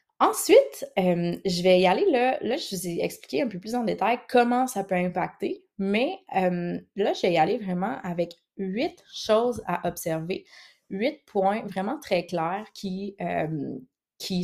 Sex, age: female, 20-39